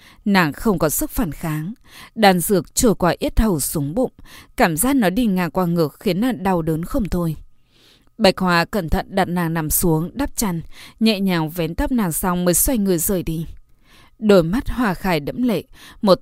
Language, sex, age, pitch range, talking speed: Vietnamese, female, 20-39, 165-210 Hz, 205 wpm